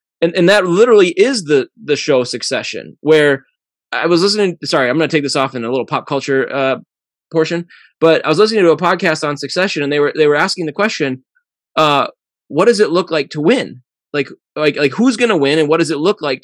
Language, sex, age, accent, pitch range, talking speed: English, male, 20-39, American, 130-170 Hz, 230 wpm